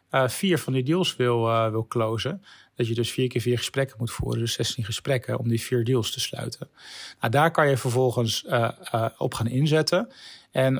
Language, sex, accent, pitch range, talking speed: Dutch, male, Dutch, 120-140 Hz, 210 wpm